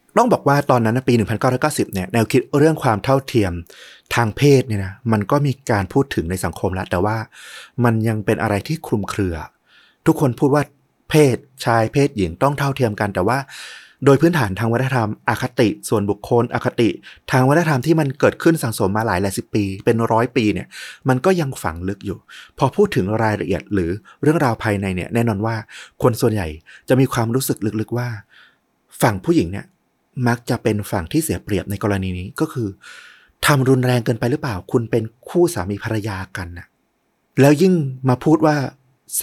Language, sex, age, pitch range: Thai, male, 30-49, 105-135 Hz